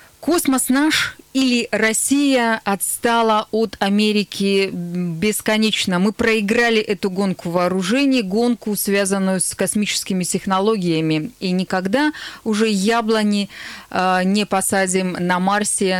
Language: Russian